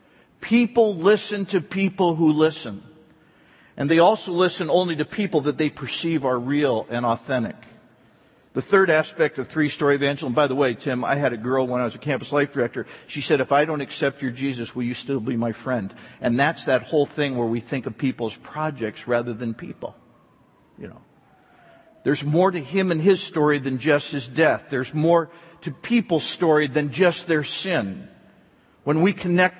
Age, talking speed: 50-69, 195 wpm